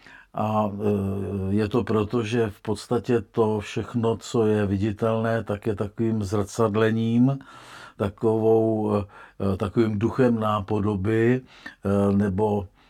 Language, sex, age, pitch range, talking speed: Czech, male, 50-69, 100-110 Hz, 100 wpm